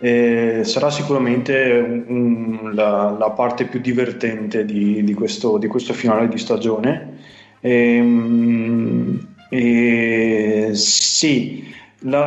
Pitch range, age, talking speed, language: 110-125 Hz, 20-39, 105 wpm, Italian